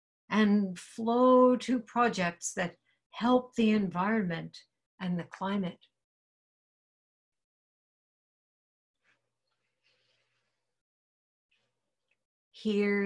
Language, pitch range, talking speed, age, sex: English, 185-235 Hz, 55 wpm, 60-79, female